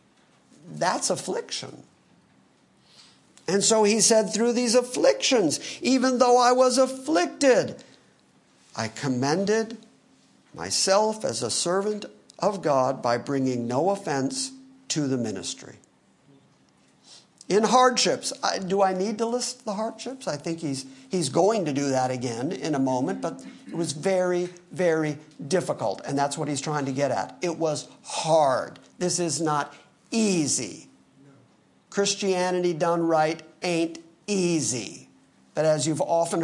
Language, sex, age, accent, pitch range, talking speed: English, male, 50-69, American, 140-195 Hz, 135 wpm